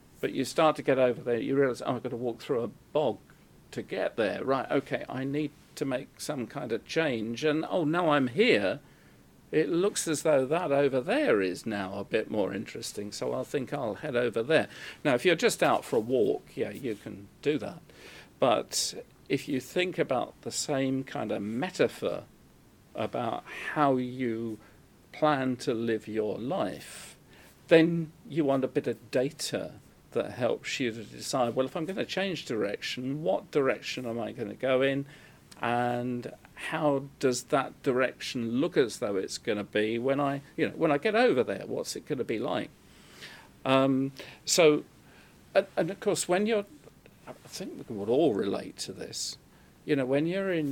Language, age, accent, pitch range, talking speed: English, 50-69, British, 125-150 Hz, 190 wpm